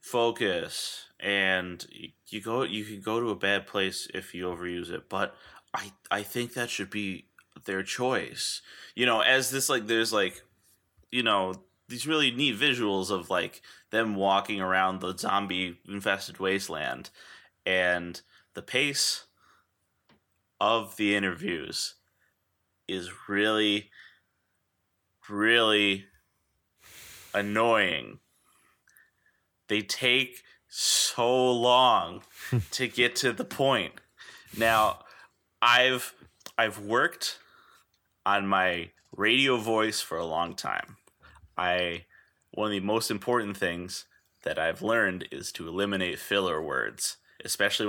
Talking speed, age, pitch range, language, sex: 115 wpm, 20-39, 95-115 Hz, English, male